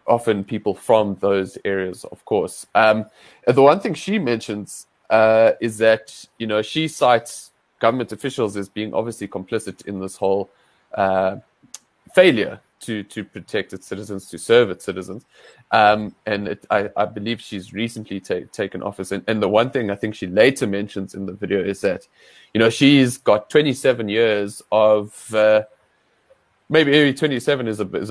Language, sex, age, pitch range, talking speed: English, male, 20-39, 100-120 Hz, 165 wpm